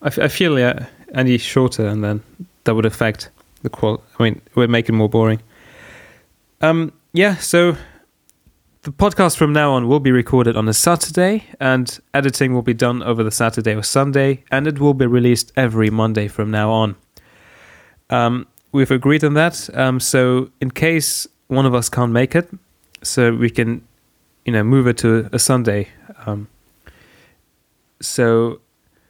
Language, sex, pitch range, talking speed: English, male, 110-145 Hz, 165 wpm